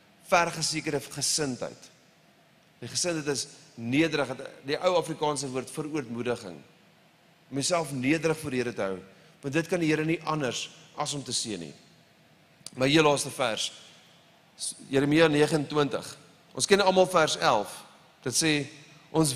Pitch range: 130-170 Hz